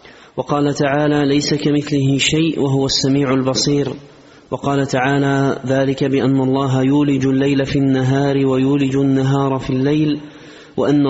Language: Arabic